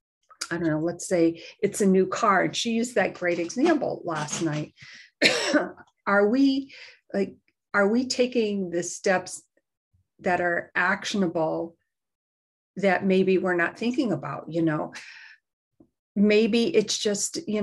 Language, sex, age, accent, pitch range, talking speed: English, female, 50-69, American, 175-205 Hz, 135 wpm